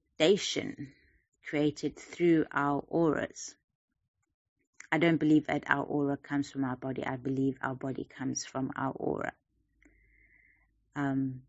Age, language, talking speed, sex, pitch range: 30-49, English, 120 wpm, female, 135-155 Hz